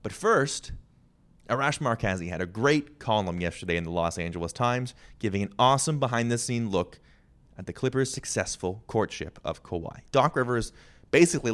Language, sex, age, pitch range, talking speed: English, male, 30-49, 90-125 Hz, 160 wpm